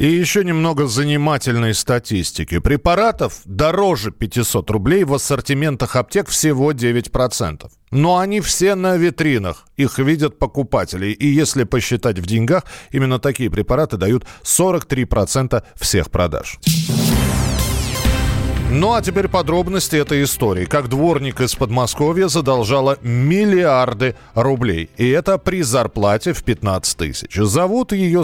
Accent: native